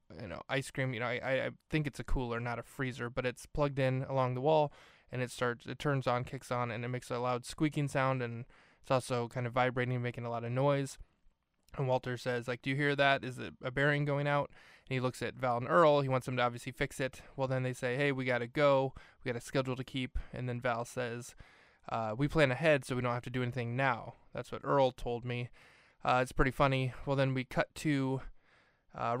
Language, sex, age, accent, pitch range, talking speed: English, male, 20-39, American, 120-135 Hz, 250 wpm